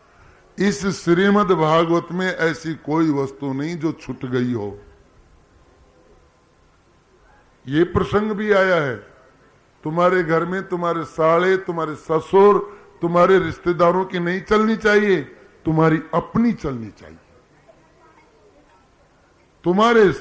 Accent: Indian